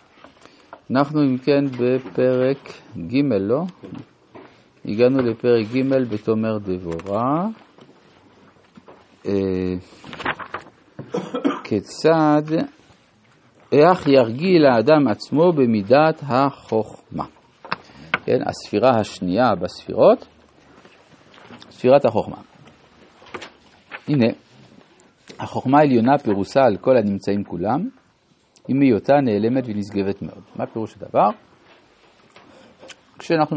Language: Hebrew